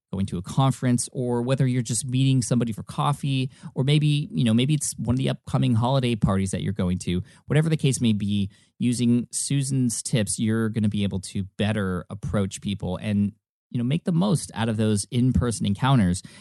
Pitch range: 100-130 Hz